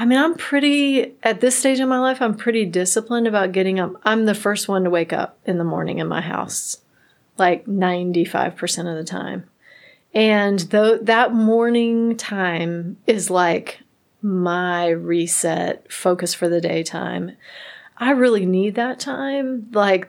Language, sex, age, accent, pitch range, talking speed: English, female, 30-49, American, 185-225 Hz, 160 wpm